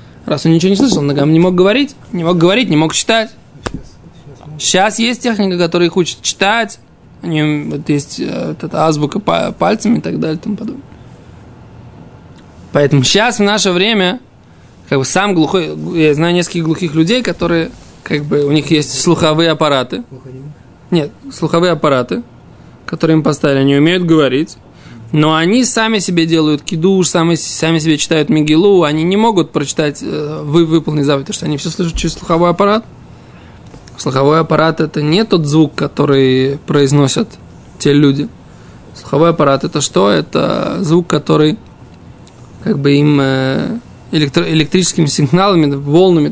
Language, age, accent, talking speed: Russian, 20-39, native, 145 wpm